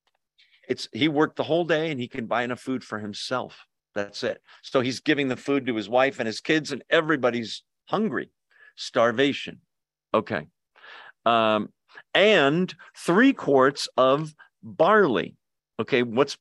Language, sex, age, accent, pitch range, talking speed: English, male, 50-69, American, 120-170 Hz, 145 wpm